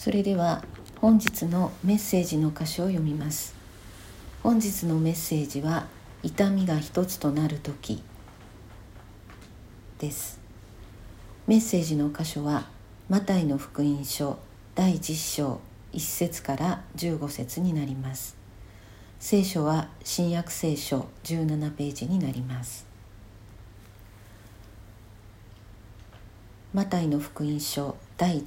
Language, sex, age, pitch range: Japanese, female, 50-69, 105-165 Hz